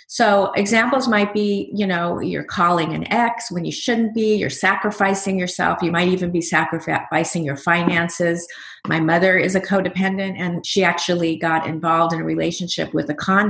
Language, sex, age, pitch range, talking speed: English, female, 30-49, 160-195 Hz, 180 wpm